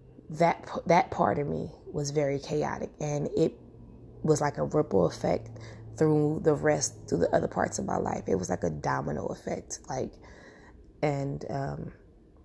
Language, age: English, 20-39